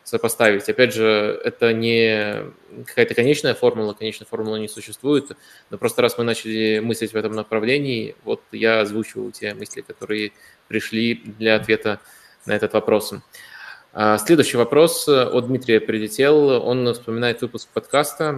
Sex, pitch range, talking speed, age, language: male, 110-125 Hz, 135 wpm, 20-39, Russian